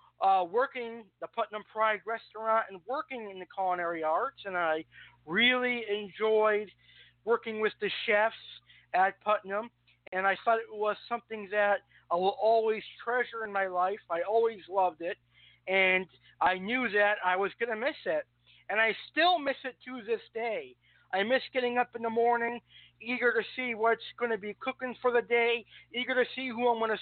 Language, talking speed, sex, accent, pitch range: English, 185 wpm, male, American, 195-245 Hz